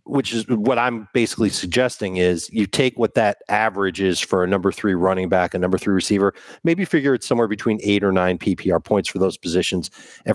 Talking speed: 215 wpm